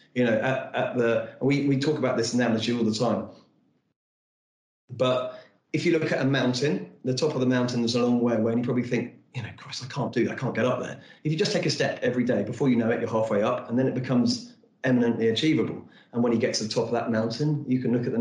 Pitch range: 115-135 Hz